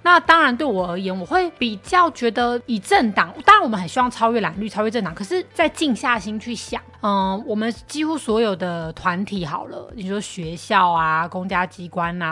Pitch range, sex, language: 180-235 Hz, female, Chinese